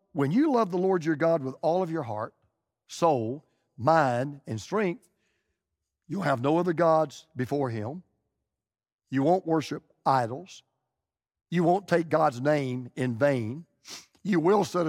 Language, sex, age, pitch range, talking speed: English, male, 50-69, 135-195 Hz, 150 wpm